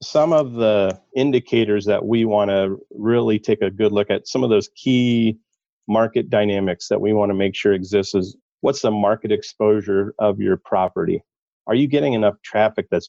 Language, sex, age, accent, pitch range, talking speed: English, male, 40-59, American, 100-110 Hz, 190 wpm